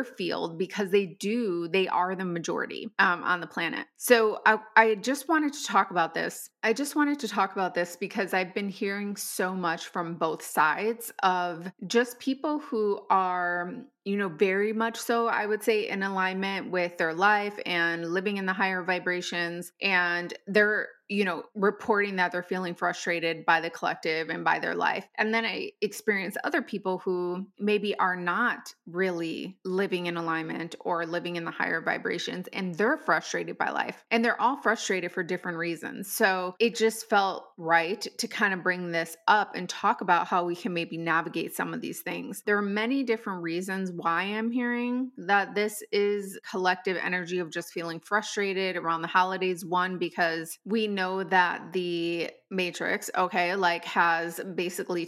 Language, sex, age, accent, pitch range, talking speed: English, female, 20-39, American, 175-210 Hz, 180 wpm